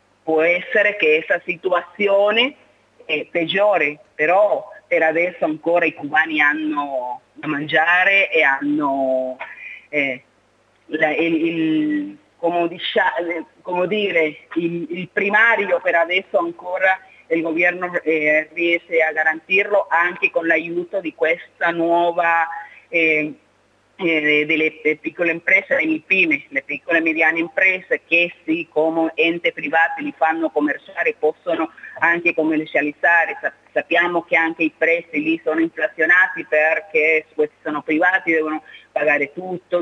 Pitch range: 155-185 Hz